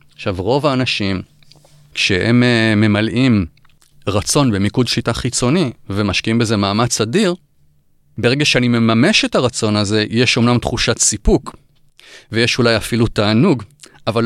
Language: Hebrew